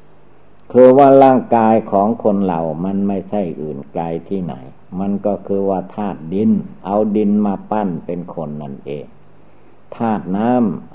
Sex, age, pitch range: male, 60-79, 90-110 Hz